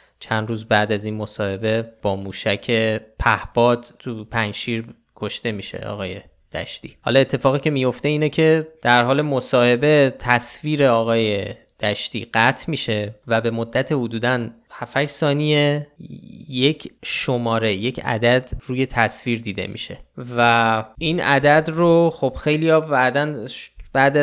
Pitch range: 110-140 Hz